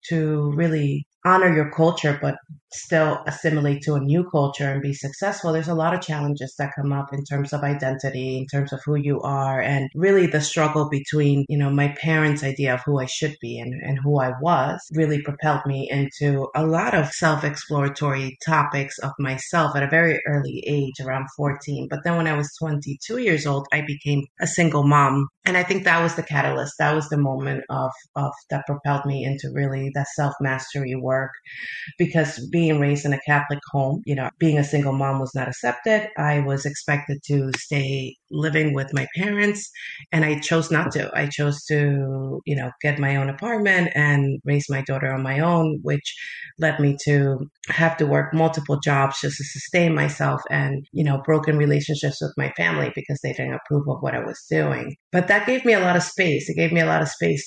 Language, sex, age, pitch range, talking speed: English, female, 30-49, 140-155 Hz, 205 wpm